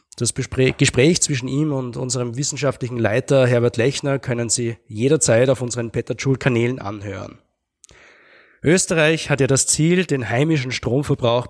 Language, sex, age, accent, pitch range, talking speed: German, male, 20-39, German, 120-145 Hz, 135 wpm